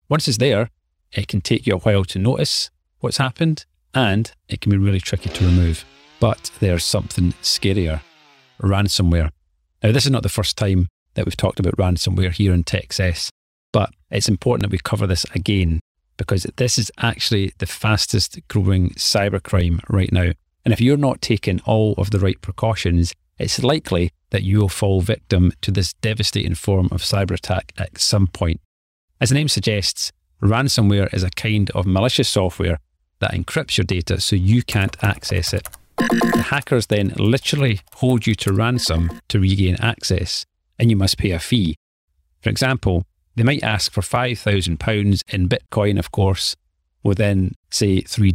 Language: English